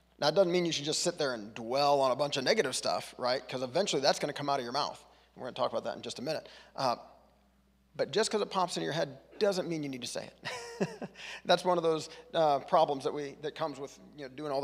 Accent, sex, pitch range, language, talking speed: American, male, 130-170 Hz, English, 285 wpm